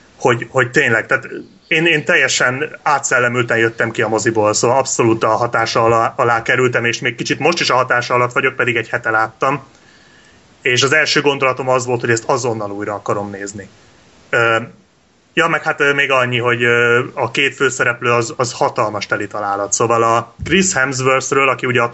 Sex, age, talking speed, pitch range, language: male, 30-49, 180 wpm, 115-135 Hz, Hungarian